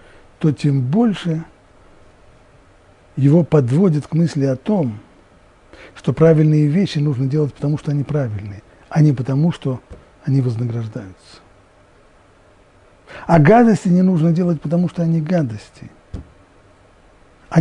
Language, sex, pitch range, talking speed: Russian, male, 105-155 Hz, 115 wpm